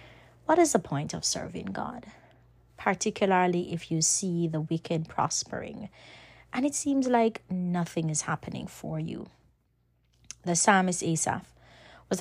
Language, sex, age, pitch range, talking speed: English, female, 30-49, 160-190 Hz, 135 wpm